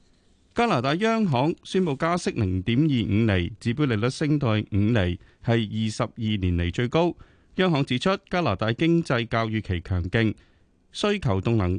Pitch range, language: 105-150 Hz, Chinese